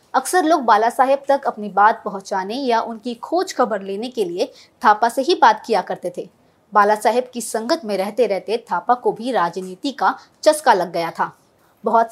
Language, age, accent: Hindi, 20-39, native